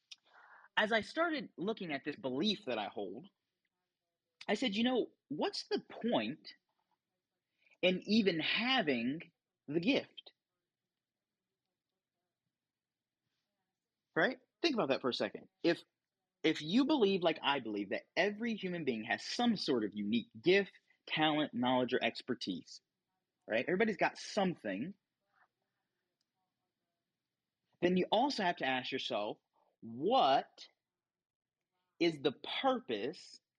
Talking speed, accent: 115 wpm, American